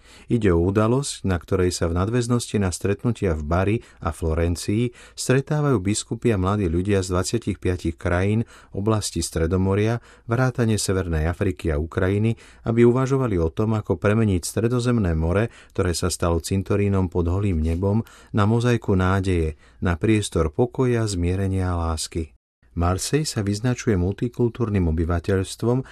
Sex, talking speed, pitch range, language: male, 130 wpm, 90-115 Hz, Slovak